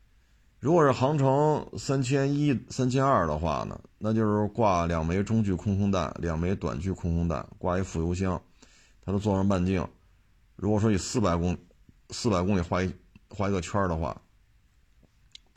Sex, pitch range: male, 85-105 Hz